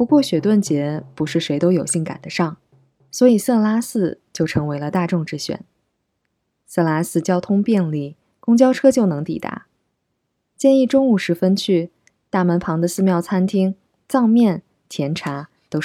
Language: Chinese